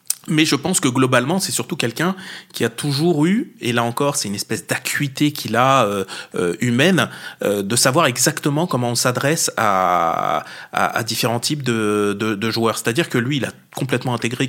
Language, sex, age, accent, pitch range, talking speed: French, male, 30-49, French, 120-165 Hz, 190 wpm